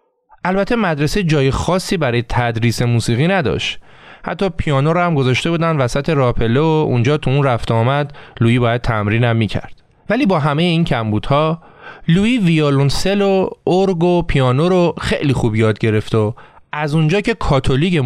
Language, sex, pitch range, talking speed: Persian, male, 120-175 Hz, 150 wpm